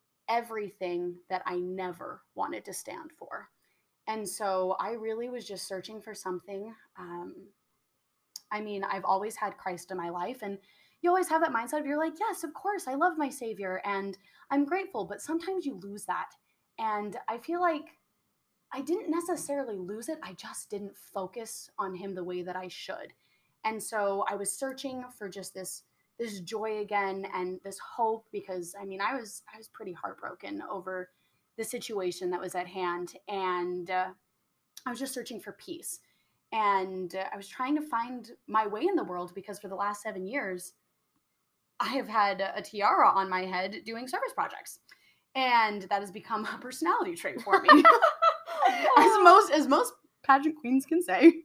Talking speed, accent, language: 180 wpm, American, English